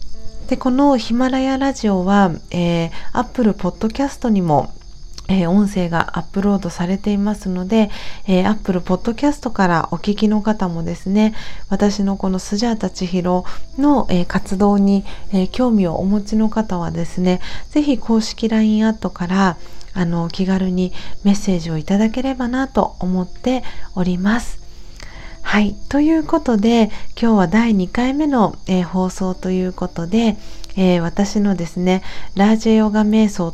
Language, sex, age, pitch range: Japanese, female, 40-59, 180-220 Hz